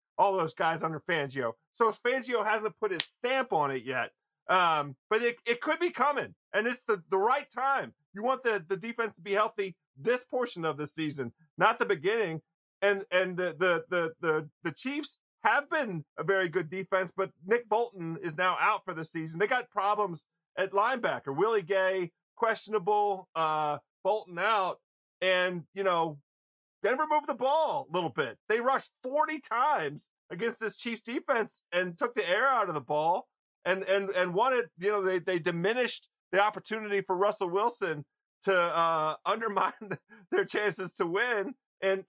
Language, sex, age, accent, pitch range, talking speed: English, male, 40-59, American, 170-225 Hz, 180 wpm